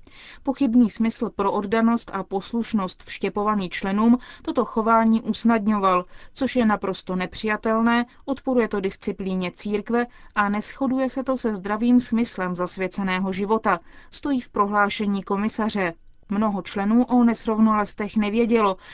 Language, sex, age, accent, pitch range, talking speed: Czech, female, 30-49, native, 195-230 Hz, 115 wpm